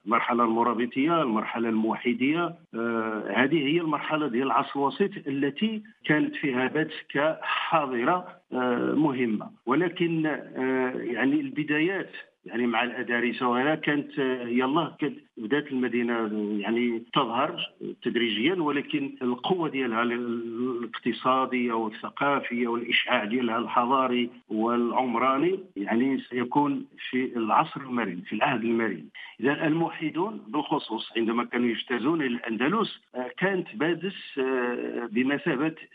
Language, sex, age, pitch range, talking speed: Arabic, male, 50-69, 120-155 Hz, 100 wpm